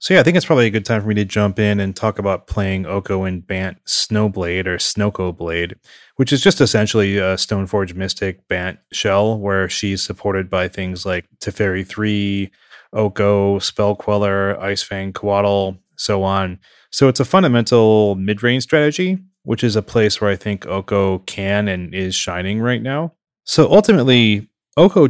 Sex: male